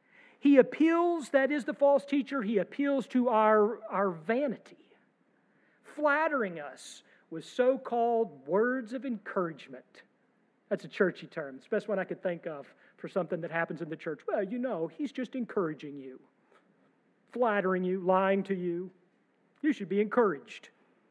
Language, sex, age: English, male, 50-69